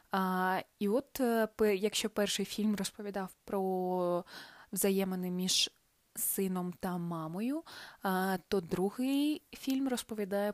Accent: native